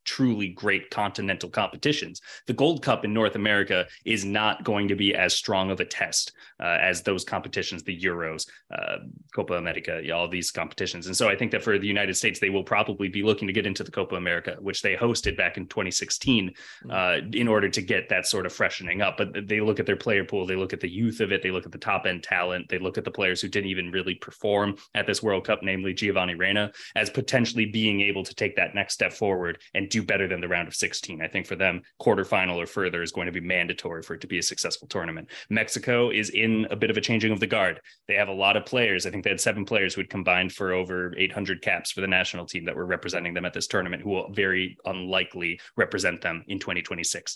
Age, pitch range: 20-39, 90-105 Hz